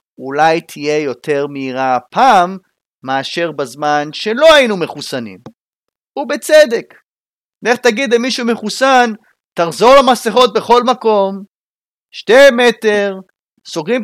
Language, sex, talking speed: Hebrew, male, 95 wpm